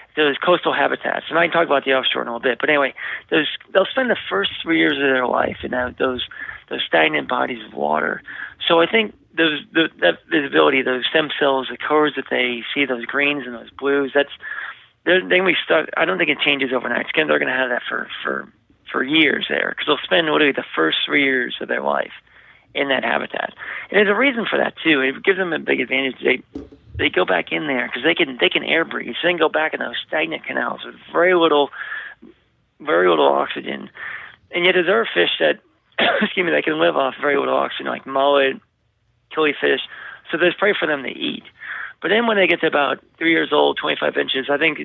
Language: English